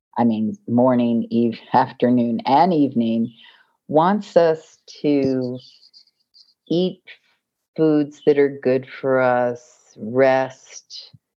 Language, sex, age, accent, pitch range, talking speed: English, female, 50-69, American, 120-145 Hz, 90 wpm